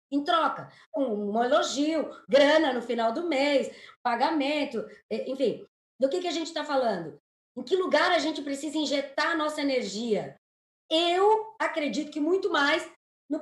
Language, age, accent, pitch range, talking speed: Portuguese, 20-39, Brazilian, 250-315 Hz, 150 wpm